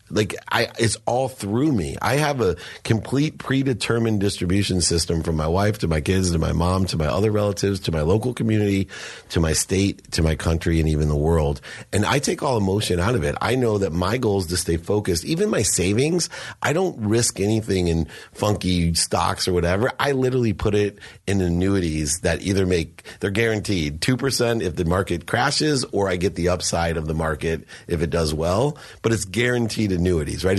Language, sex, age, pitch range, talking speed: English, male, 30-49, 85-115 Hz, 200 wpm